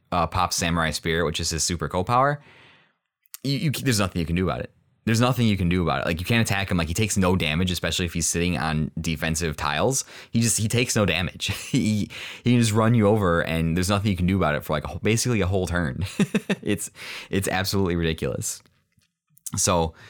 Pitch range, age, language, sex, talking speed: 80-105 Hz, 20-39, English, male, 225 wpm